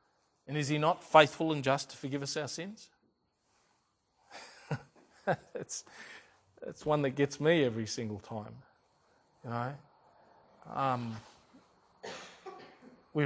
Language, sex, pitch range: English, male, 130-155 Hz